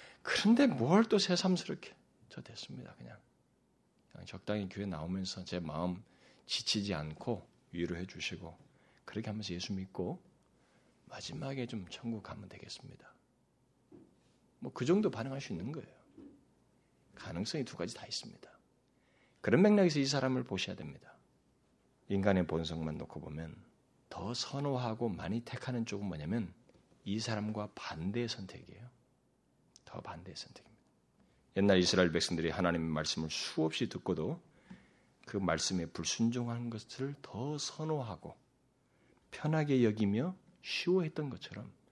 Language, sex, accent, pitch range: Korean, male, native, 95-155 Hz